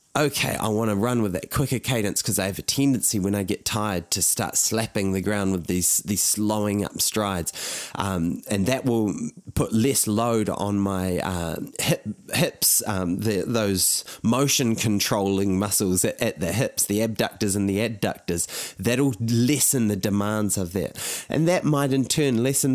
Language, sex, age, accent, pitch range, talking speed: English, male, 20-39, Australian, 100-130 Hz, 180 wpm